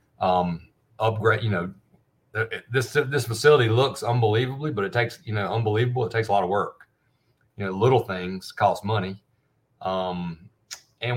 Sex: male